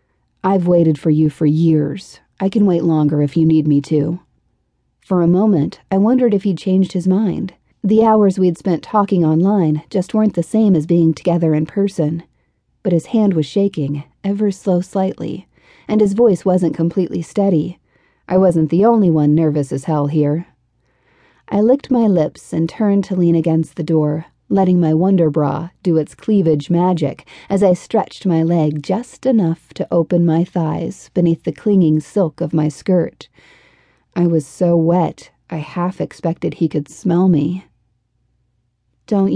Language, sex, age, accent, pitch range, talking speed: English, female, 40-59, American, 155-195 Hz, 170 wpm